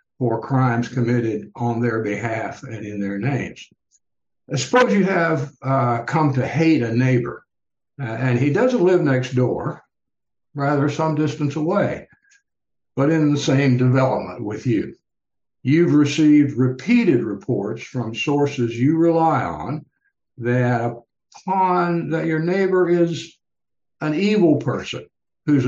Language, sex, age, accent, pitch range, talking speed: English, male, 60-79, American, 125-160 Hz, 130 wpm